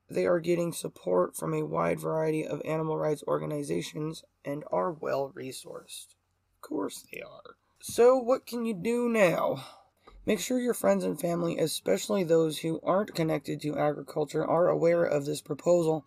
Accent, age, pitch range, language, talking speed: American, 20-39, 150-175 Hz, English, 160 wpm